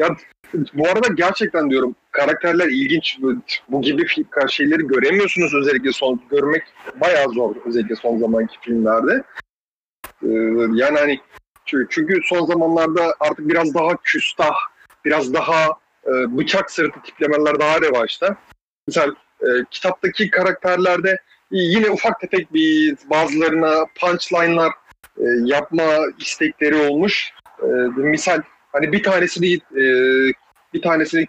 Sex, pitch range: male, 140-190 Hz